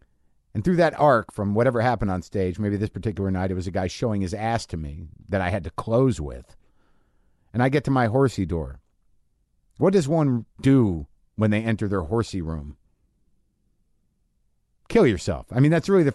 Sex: male